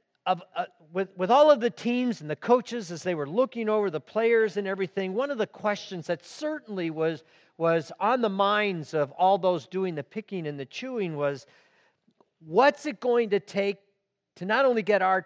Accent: American